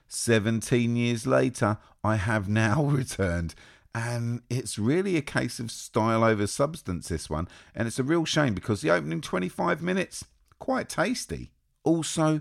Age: 40-59